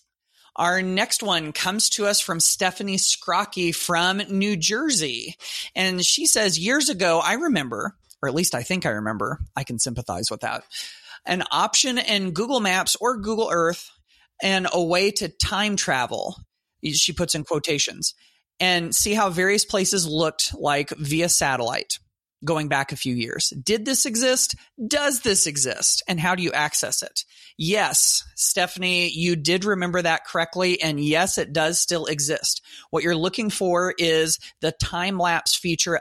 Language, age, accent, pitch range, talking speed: English, 30-49, American, 155-195 Hz, 160 wpm